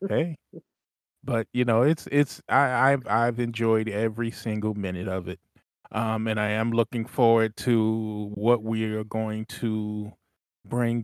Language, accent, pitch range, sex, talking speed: English, American, 105-120 Hz, male, 150 wpm